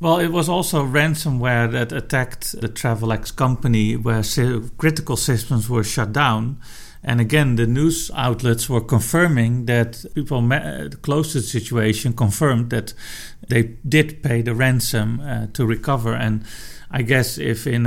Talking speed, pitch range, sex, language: 150 wpm, 115-135 Hz, male, English